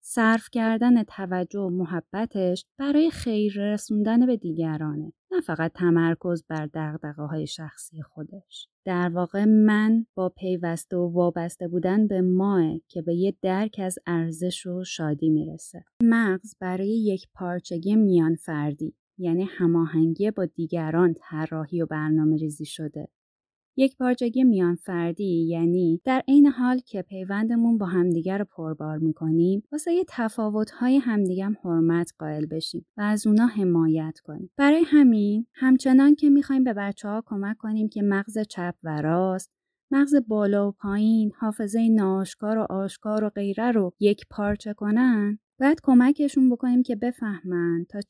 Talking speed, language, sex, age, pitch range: 145 wpm, Persian, female, 20-39, 170-225 Hz